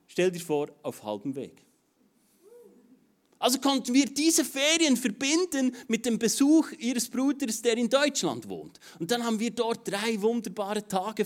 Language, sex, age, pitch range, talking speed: German, male, 30-49, 200-250 Hz, 155 wpm